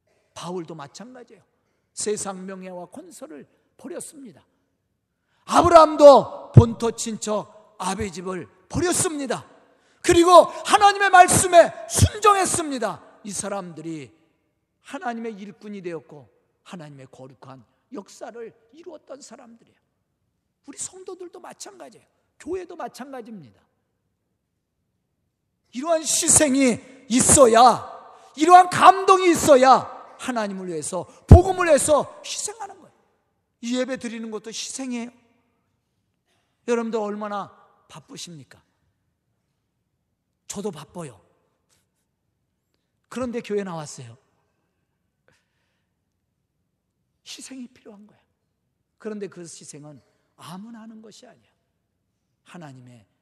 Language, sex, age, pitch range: Korean, male, 40-59, 165-265 Hz